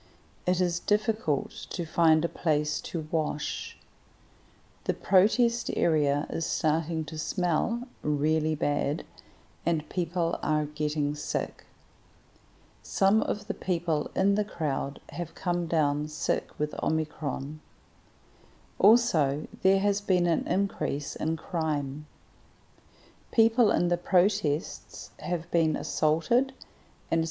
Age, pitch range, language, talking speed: 40-59, 150-185 Hz, English, 115 wpm